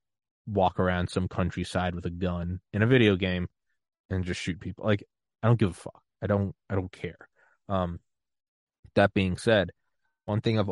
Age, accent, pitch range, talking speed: 20-39, American, 90-100 Hz, 185 wpm